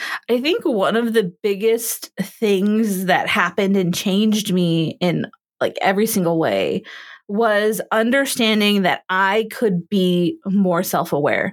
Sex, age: female, 20-39